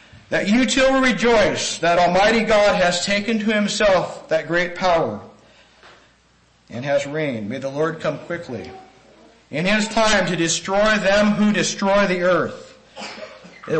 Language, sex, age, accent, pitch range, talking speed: English, male, 50-69, American, 170-230 Hz, 145 wpm